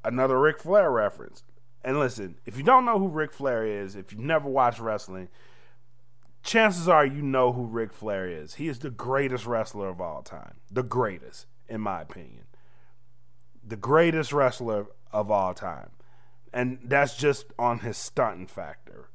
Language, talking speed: English, 165 wpm